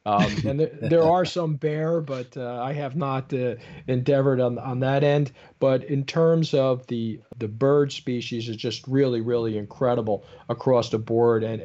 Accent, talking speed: American, 180 wpm